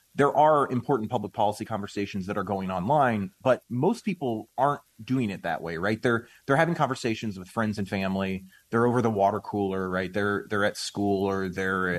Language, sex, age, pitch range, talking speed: English, male, 30-49, 95-120 Hz, 195 wpm